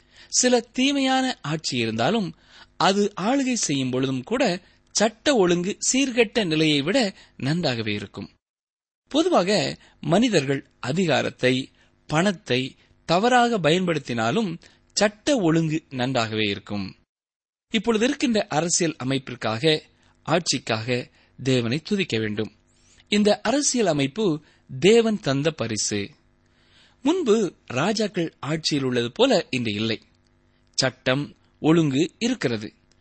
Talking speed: 90 wpm